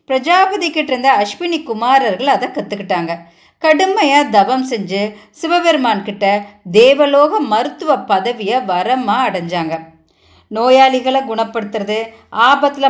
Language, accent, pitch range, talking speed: Tamil, native, 205-270 Hz, 95 wpm